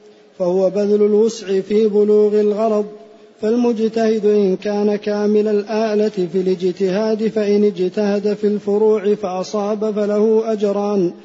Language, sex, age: Arabic, male, 40-59